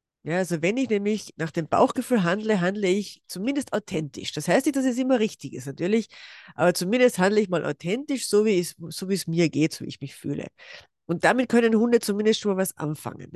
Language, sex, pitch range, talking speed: German, female, 165-210 Hz, 225 wpm